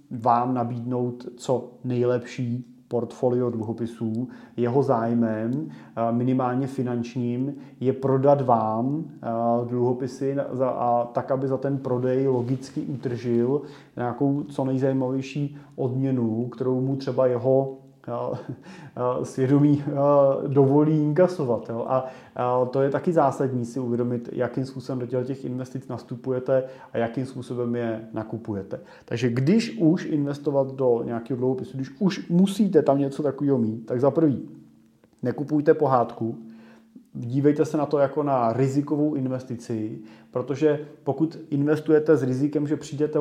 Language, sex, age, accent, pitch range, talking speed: Czech, male, 30-49, native, 120-140 Hz, 115 wpm